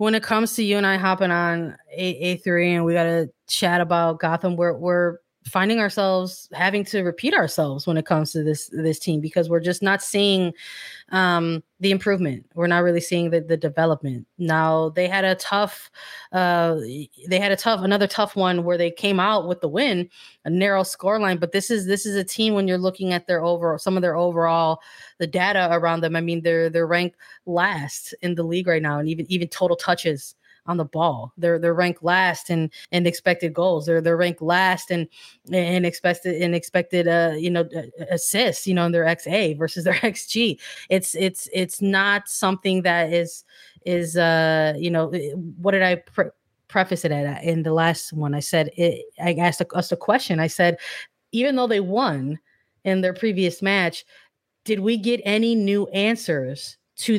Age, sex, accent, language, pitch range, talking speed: 20-39, female, American, English, 165-190 Hz, 195 wpm